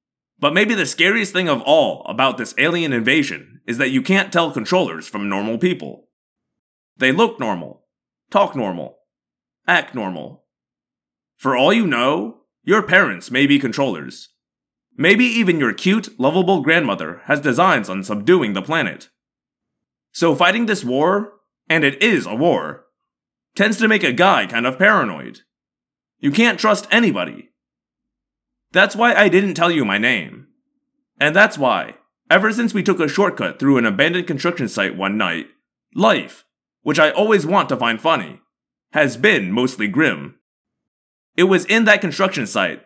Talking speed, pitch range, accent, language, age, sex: 155 wpm, 140-205 Hz, American, English, 30-49, male